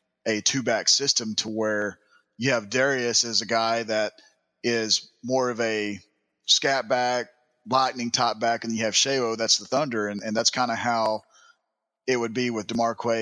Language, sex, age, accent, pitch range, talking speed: English, male, 30-49, American, 110-125 Hz, 175 wpm